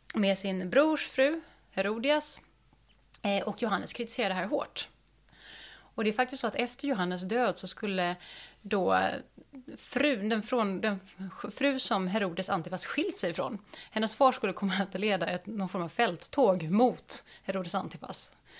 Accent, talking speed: native, 160 wpm